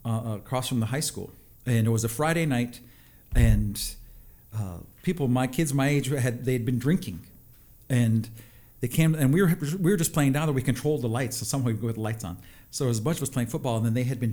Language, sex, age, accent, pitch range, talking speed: English, male, 50-69, American, 115-140 Hz, 260 wpm